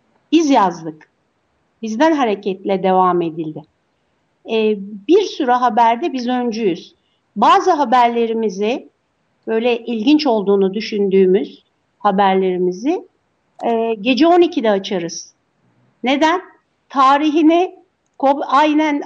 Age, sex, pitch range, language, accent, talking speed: 60-79, female, 215-295 Hz, Turkish, native, 80 wpm